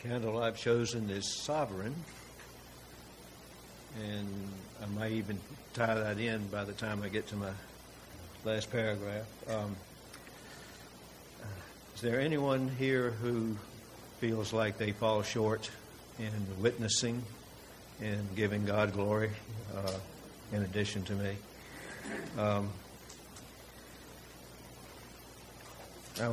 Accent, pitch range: American, 100-110 Hz